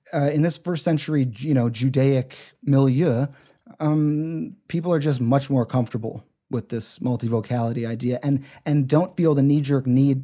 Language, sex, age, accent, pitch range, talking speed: English, male, 30-49, American, 130-155 Hz, 160 wpm